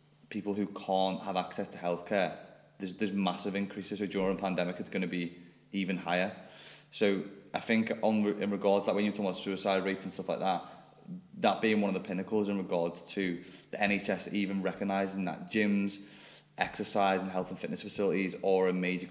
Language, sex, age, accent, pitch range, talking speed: English, male, 20-39, British, 90-100 Hz, 200 wpm